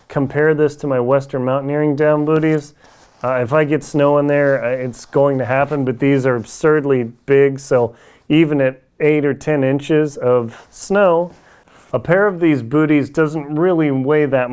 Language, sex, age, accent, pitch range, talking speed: English, male, 30-49, American, 130-160 Hz, 175 wpm